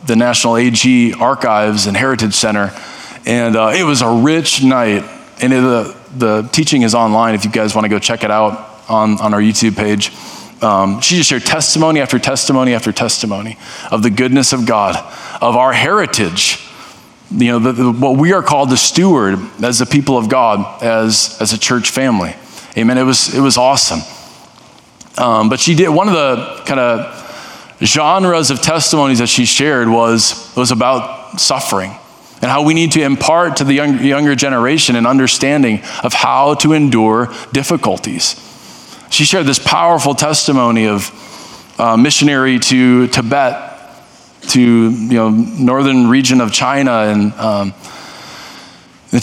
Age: 20-39